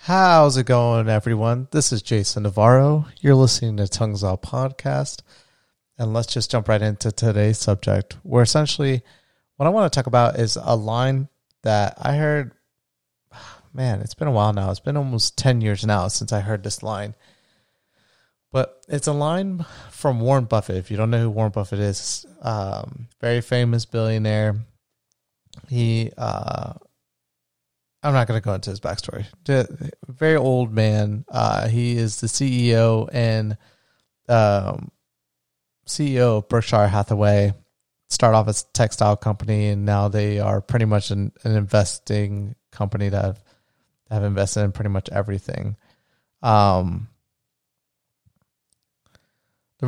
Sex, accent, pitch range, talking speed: male, American, 105-125 Hz, 150 wpm